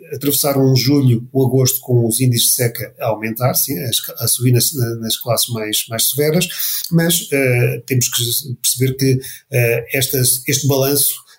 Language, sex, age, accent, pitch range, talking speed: Portuguese, male, 40-59, Portuguese, 130-145 Hz, 165 wpm